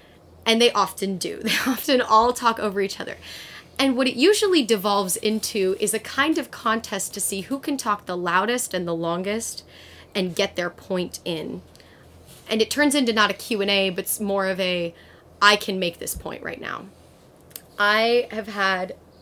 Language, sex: English, female